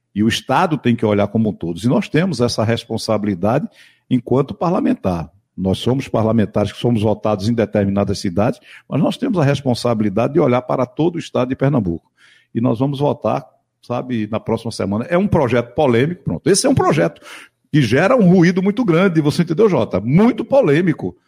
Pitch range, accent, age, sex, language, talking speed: 115-170 Hz, Brazilian, 60-79, male, Portuguese, 185 wpm